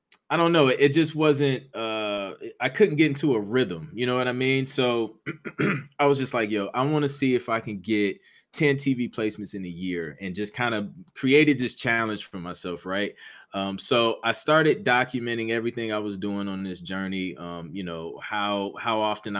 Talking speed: 205 wpm